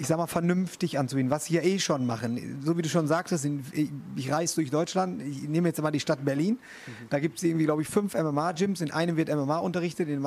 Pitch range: 140-170 Hz